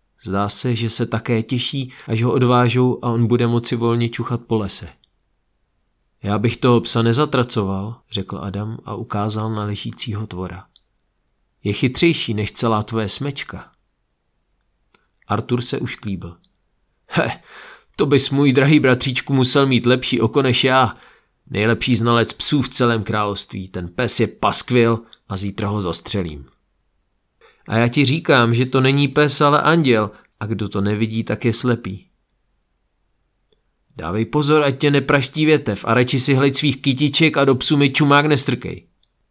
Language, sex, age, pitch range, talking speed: Czech, male, 40-59, 105-130 Hz, 155 wpm